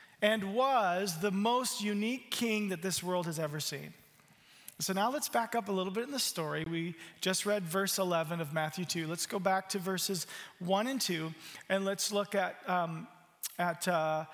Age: 40-59